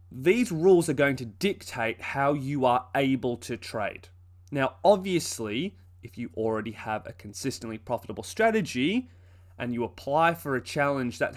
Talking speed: 155 wpm